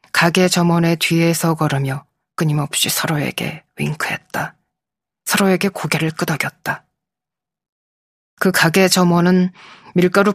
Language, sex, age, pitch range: Korean, female, 20-39, 155-185 Hz